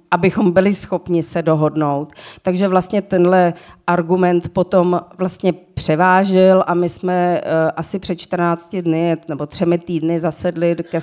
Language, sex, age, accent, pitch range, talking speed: Czech, female, 40-59, native, 165-180 Hz, 130 wpm